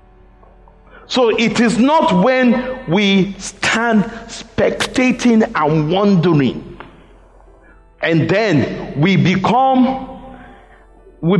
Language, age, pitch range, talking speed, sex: English, 50-69, 140-205 Hz, 80 wpm, male